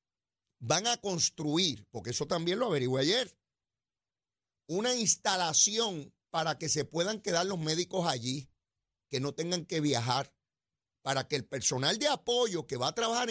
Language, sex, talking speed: Spanish, male, 155 wpm